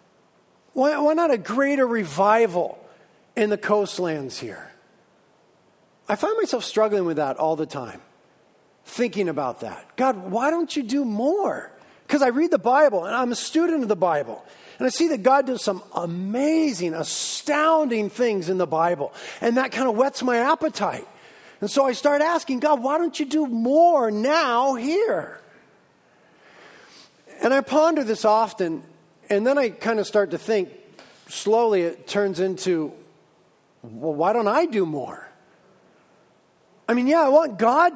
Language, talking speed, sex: English, 160 wpm, male